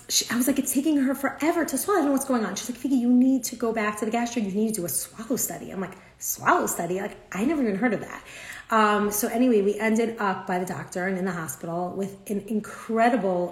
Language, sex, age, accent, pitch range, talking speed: English, female, 30-49, American, 185-225 Hz, 265 wpm